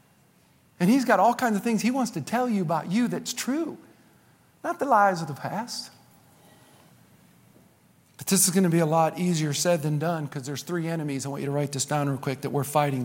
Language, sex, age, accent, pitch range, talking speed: English, male, 50-69, American, 165-265 Hz, 230 wpm